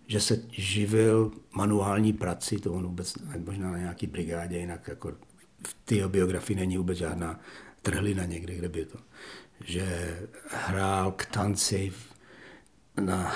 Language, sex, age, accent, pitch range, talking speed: Czech, male, 60-79, native, 90-105 Hz, 135 wpm